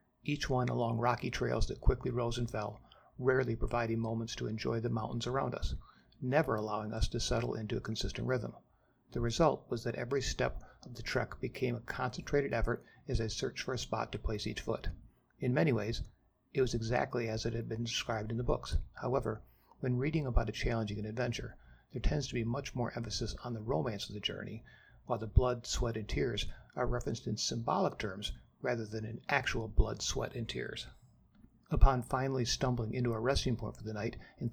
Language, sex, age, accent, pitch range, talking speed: English, male, 60-79, American, 110-125 Hz, 200 wpm